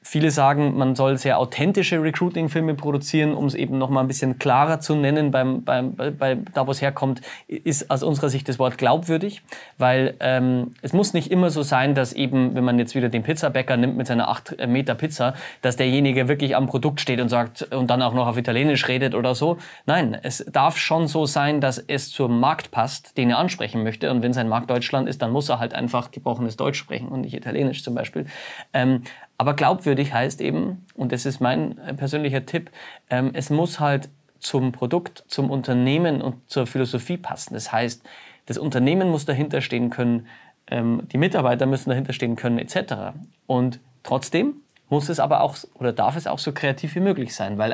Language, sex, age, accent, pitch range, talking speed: German, male, 20-39, German, 125-150 Hz, 195 wpm